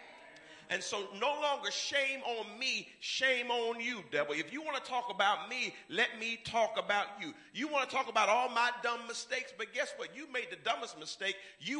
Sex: male